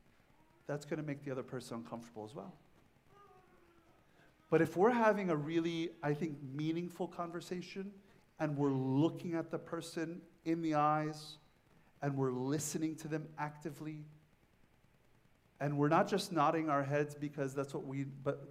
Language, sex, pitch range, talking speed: English, male, 145-175 Hz, 150 wpm